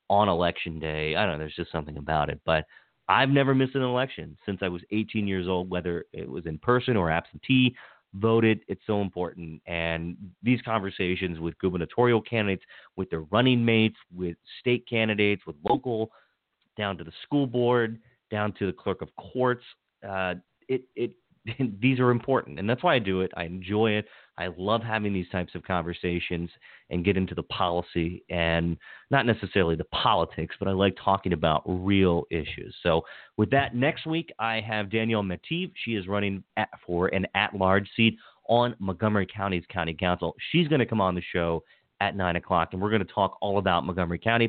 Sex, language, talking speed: male, English, 185 wpm